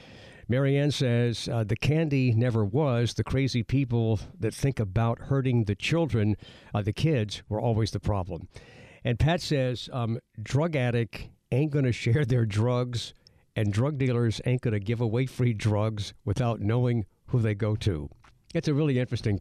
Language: English